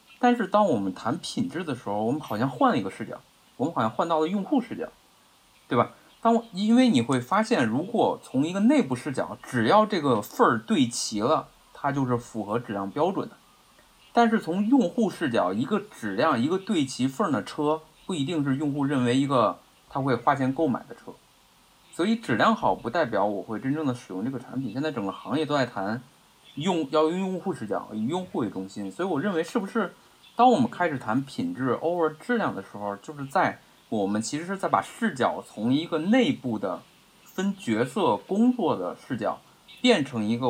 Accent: native